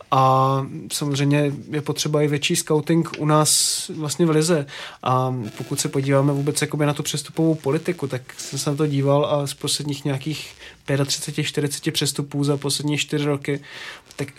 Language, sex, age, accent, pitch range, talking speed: Czech, male, 20-39, native, 140-150 Hz, 160 wpm